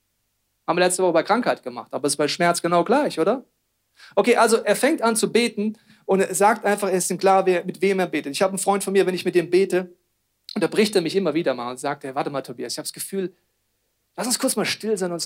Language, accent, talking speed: German, German, 275 wpm